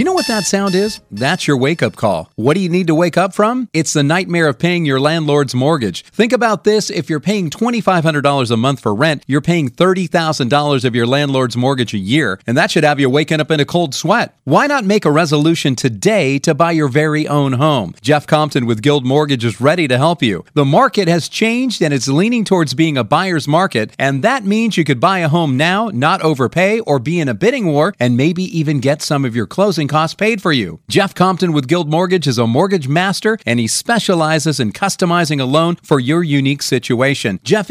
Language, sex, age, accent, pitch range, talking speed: English, male, 40-59, American, 140-190 Hz, 225 wpm